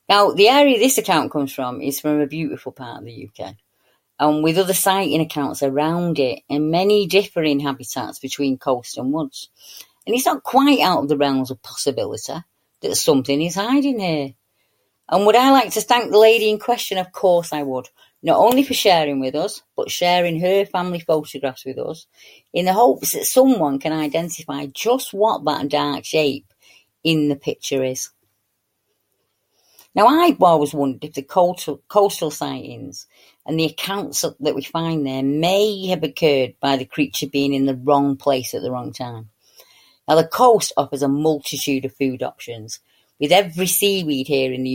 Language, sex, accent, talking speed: English, female, British, 180 wpm